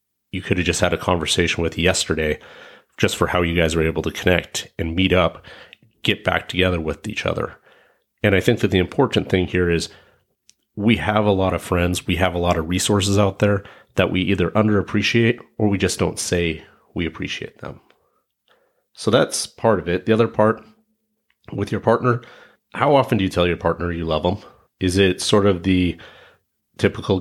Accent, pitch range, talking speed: American, 85-105 Hz, 195 wpm